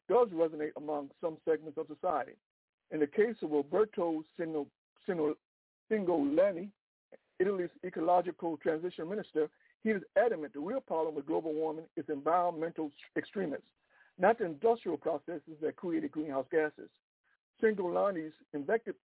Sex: male